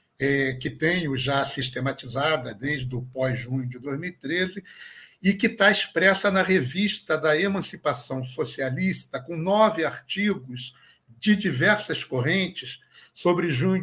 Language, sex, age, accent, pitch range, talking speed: Portuguese, male, 60-79, Brazilian, 135-190 Hz, 115 wpm